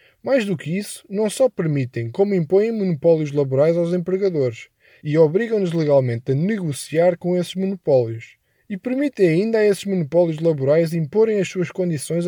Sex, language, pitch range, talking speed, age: male, Portuguese, 135-185 Hz, 155 wpm, 20-39